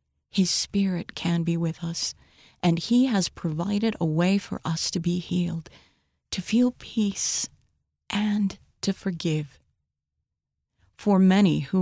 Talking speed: 130 wpm